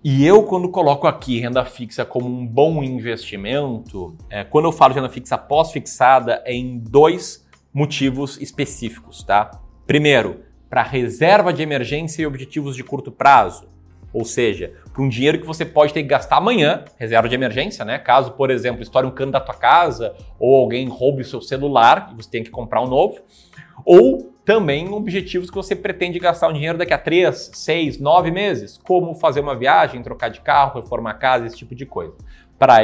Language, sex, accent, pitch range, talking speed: Portuguese, male, Brazilian, 120-165 Hz, 190 wpm